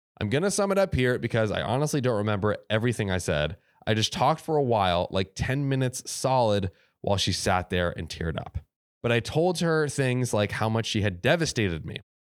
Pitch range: 105-145 Hz